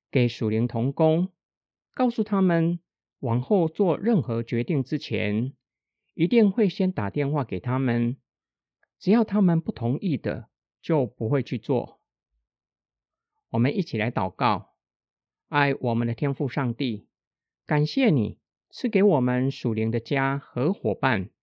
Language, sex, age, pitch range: Chinese, male, 50-69, 115-165 Hz